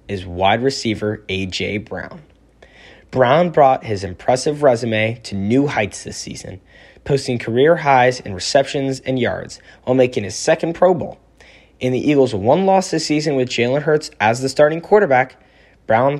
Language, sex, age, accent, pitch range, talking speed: English, male, 20-39, American, 110-145 Hz, 160 wpm